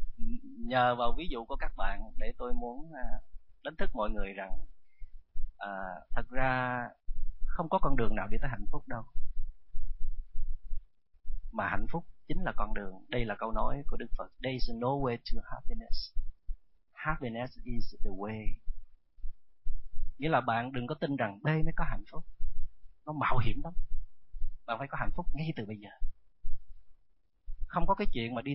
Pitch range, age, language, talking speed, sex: 110-150 Hz, 30-49, Vietnamese, 175 wpm, male